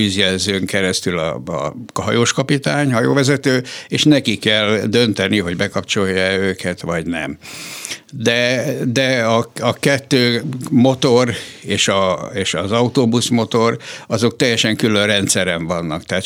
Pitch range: 100-130 Hz